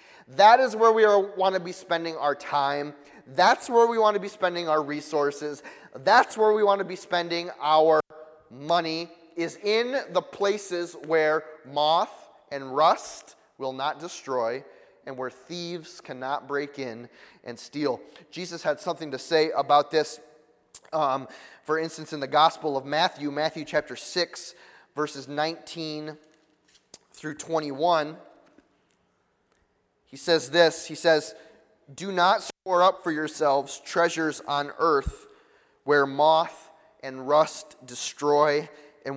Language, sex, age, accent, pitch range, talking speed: English, male, 30-49, American, 145-175 Hz, 140 wpm